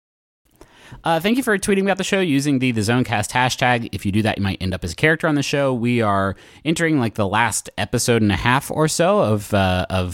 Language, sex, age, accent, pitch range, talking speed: English, male, 30-49, American, 100-140 Hz, 250 wpm